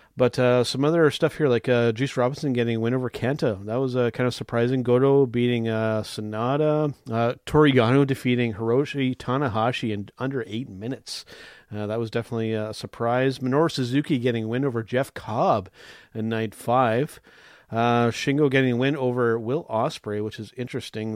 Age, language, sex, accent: 40-59, English, male, American